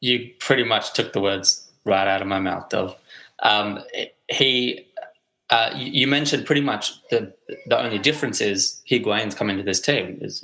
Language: English